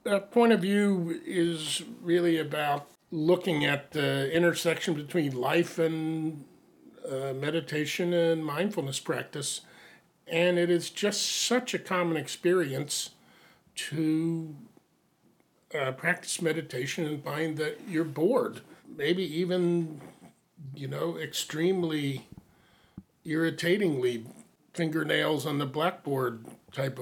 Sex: male